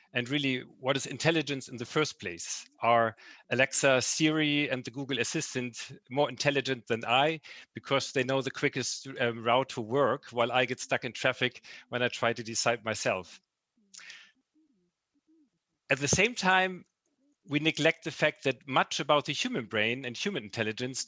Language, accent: English, German